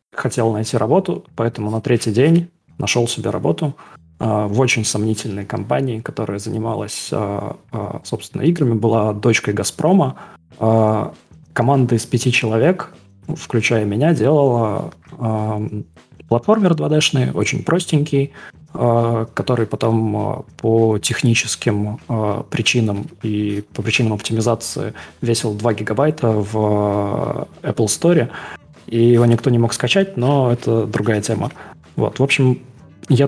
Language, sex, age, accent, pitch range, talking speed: Russian, male, 20-39, native, 110-130 Hz, 110 wpm